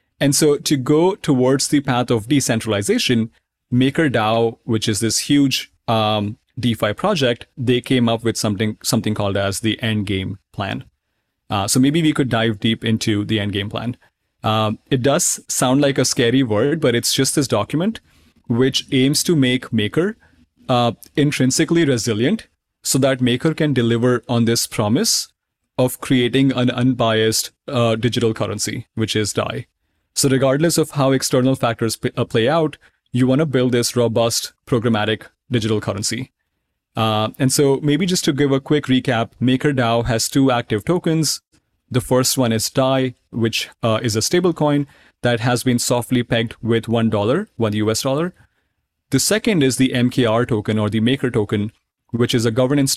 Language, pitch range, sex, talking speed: English, 110-135 Hz, male, 170 wpm